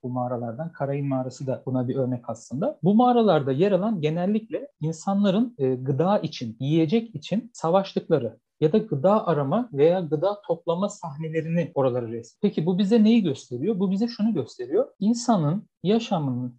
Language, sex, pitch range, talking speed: Turkish, male, 140-200 Hz, 145 wpm